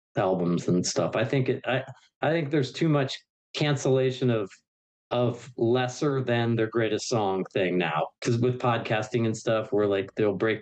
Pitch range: 115-140 Hz